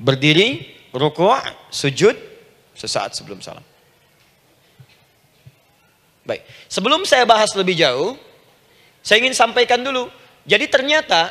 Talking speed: 95 wpm